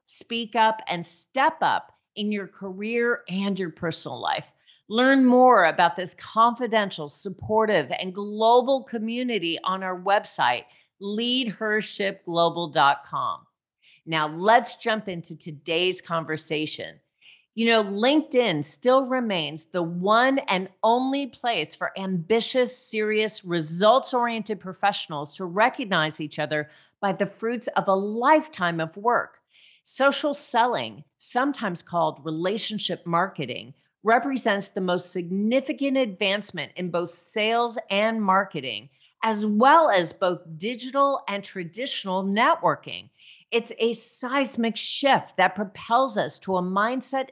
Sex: female